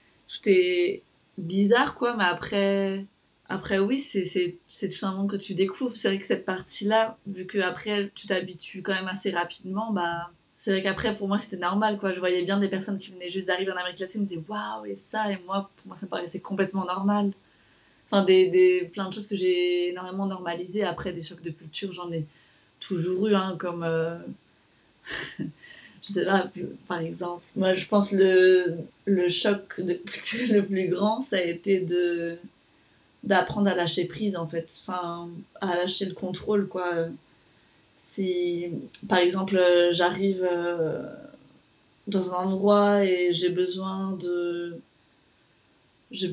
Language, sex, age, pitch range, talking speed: French, female, 20-39, 175-200 Hz, 165 wpm